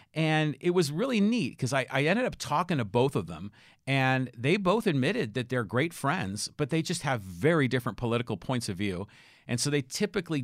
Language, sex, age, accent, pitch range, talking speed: English, male, 50-69, American, 115-145 Hz, 215 wpm